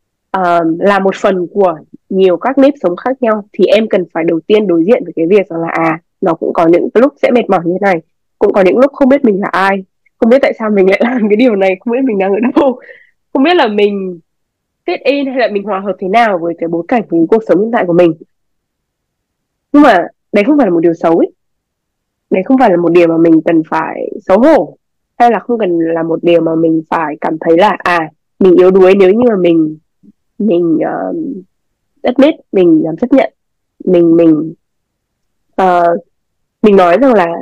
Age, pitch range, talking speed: 20-39, 170-245 Hz, 225 wpm